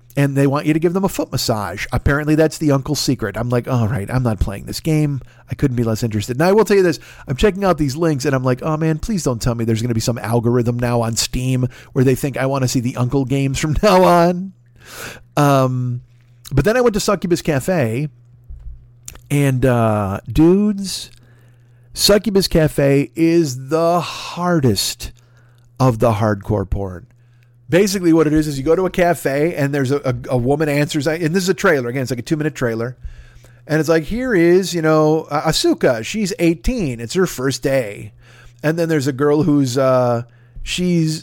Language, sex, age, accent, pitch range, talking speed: English, male, 40-59, American, 120-160 Hz, 205 wpm